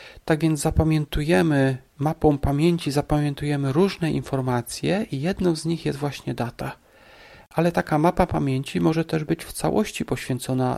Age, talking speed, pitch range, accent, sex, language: 40-59, 140 wpm, 130-170 Hz, native, male, Polish